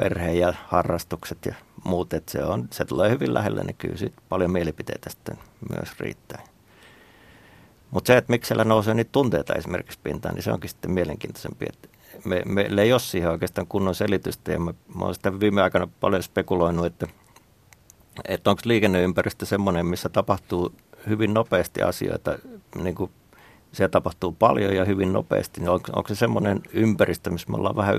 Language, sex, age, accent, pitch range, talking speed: Finnish, male, 50-69, native, 90-100 Hz, 170 wpm